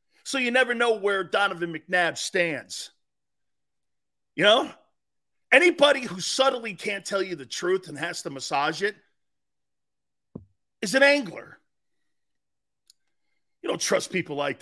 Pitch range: 160-240 Hz